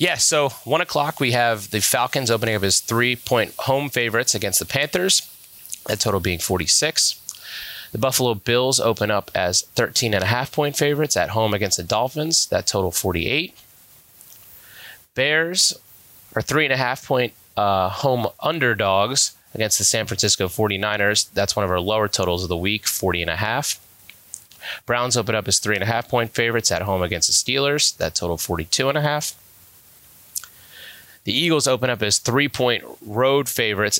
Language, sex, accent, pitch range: English, male, American, 95-125 Hz